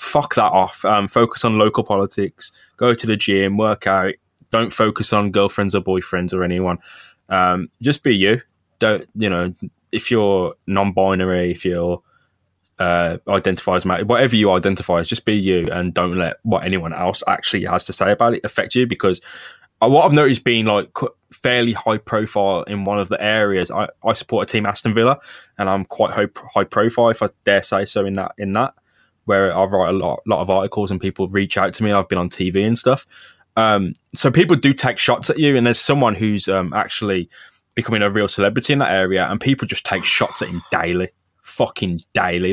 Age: 10-29